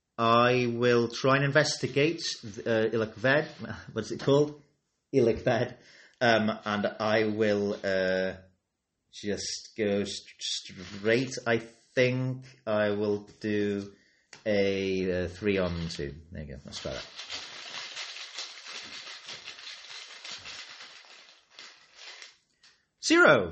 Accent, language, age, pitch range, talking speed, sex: British, English, 30-49, 95-125 Hz, 95 wpm, male